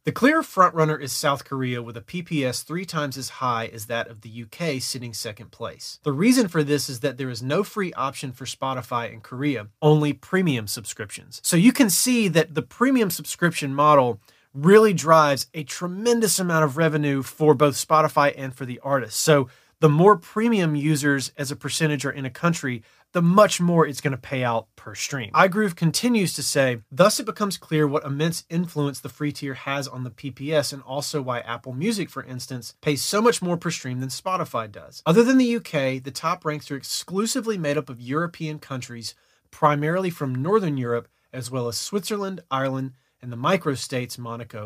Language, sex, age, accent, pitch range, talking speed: English, male, 30-49, American, 130-170 Hz, 195 wpm